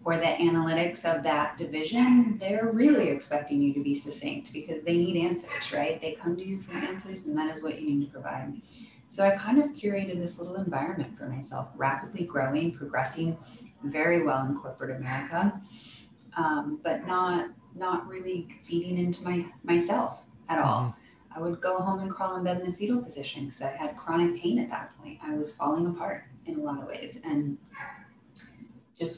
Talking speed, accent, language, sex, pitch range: 190 wpm, American, English, female, 155-190 Hz